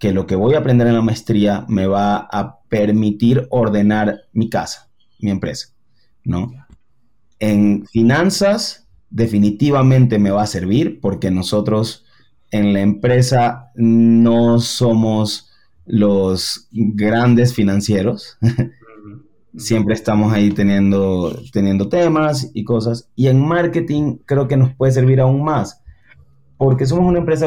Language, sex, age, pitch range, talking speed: Spanish, male, 30-49, 105-130 Hz, 130 wpm